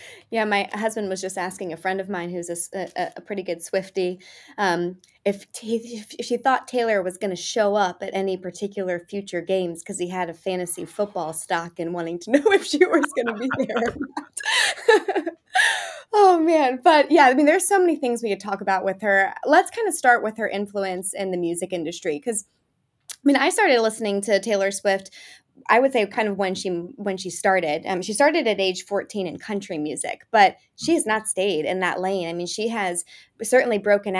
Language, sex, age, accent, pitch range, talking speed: English, female, 20-39, American, 185-230 Hz, 210 wpm